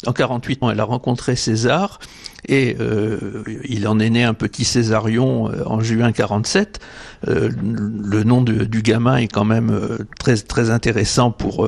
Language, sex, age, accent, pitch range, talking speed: French, male, 60-79, French, 110-130 Hz, 160 wpm